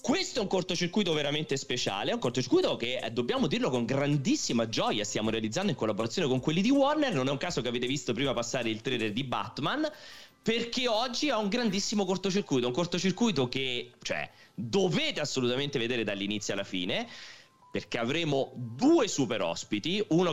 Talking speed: 170 wpm